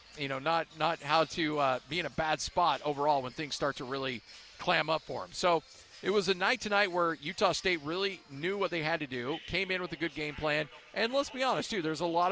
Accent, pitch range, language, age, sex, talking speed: American, 150-180 Hz, English, 40-59, male, 260 wpm